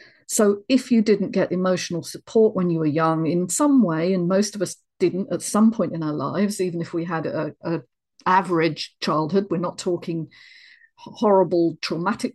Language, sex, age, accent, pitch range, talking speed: English, female, 50-69, British, 165-205 Hz, 185 wpm